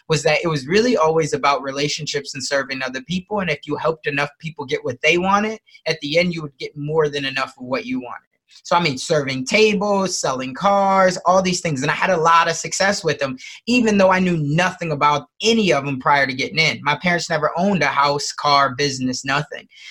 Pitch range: 145-180 Hz